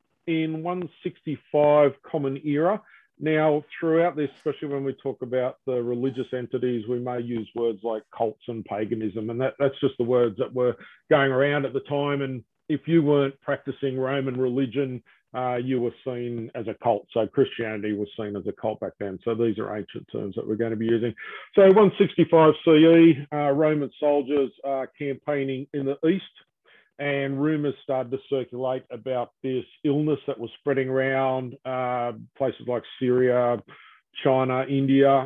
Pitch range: 125-145 Hz